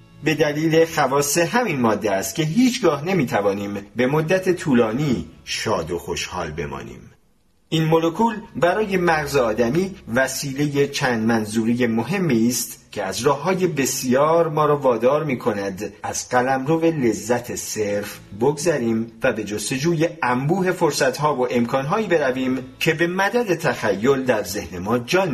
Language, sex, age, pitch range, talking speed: Persian, male, 40-59, 105-160 Hz, 140 wpm